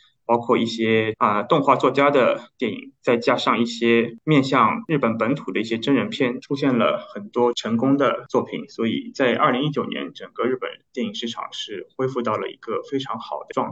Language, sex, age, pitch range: Chinese, male, 20-39, 115-160 Hz